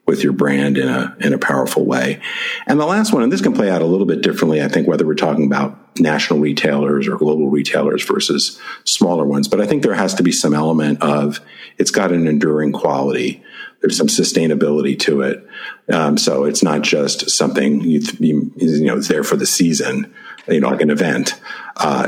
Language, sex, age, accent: English, male, 50-69, American